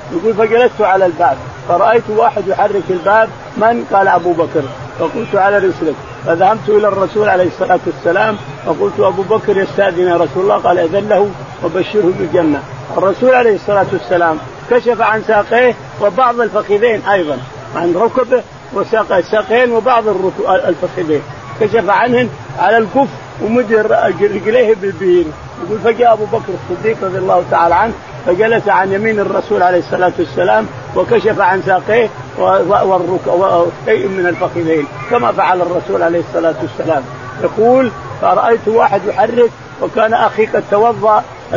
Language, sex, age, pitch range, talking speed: Arabic, male, 50-69, 175-225 Hz, 140 wpm